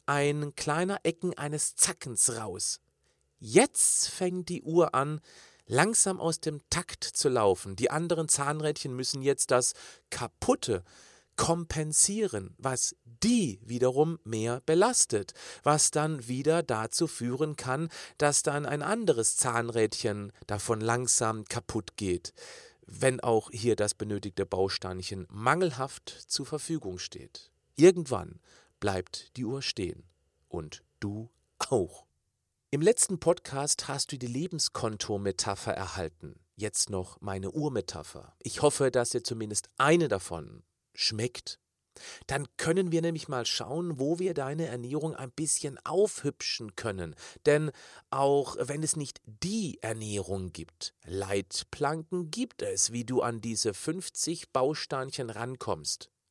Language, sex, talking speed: German, male, 125 wpm